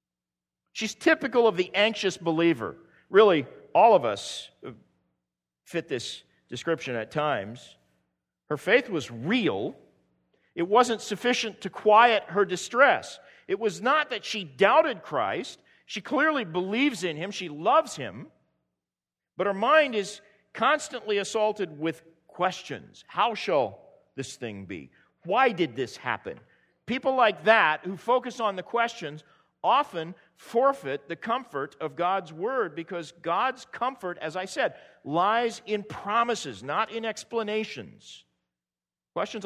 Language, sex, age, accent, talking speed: English, male, 50-69, American, 130 wpm